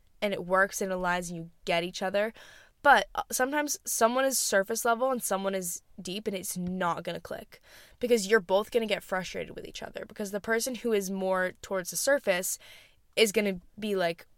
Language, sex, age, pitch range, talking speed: English, female, 10-29, 180-215 Hz, 210 wpm